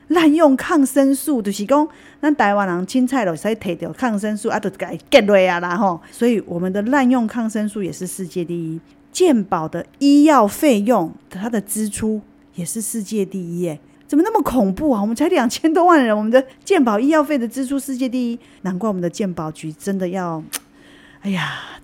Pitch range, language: 180-255 Hz, Chinese